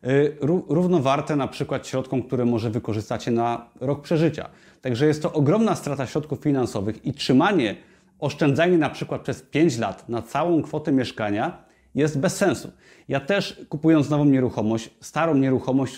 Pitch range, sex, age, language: 115-150 Hz, male, 30-49, Polish